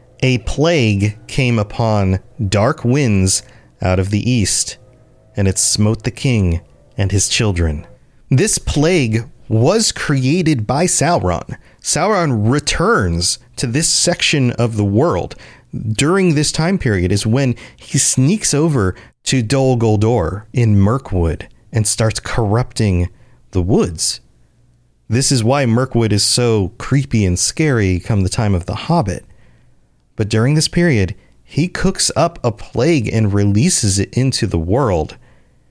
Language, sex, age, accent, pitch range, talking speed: English, male, 40-59, American, 100-130 Hz, 135 wpm